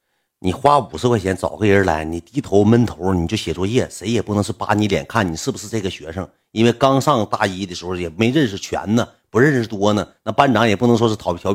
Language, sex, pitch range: Chinese, male, 90-120 Hz